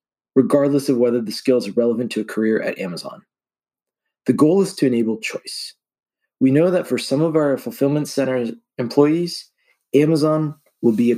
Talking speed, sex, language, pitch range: 170 wpm, male, English, 120-160 Hz